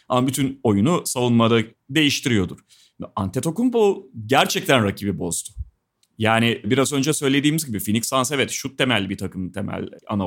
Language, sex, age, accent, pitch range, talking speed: Turkish, male, 30-49, native, 110-180 Hz, 135 wpm